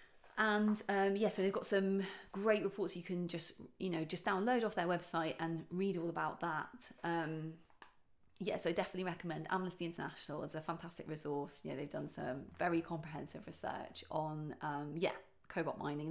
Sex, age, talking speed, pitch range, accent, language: female, 30-49, 185 wpm, 165-210 Hz, British, English